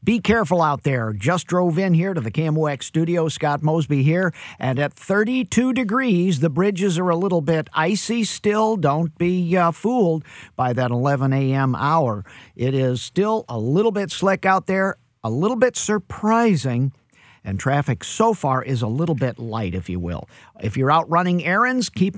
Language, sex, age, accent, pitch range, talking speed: English, male, 50-69, American, 125-180 Hz, 180 wpm